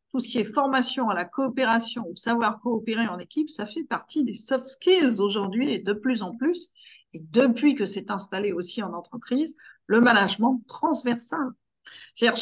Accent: French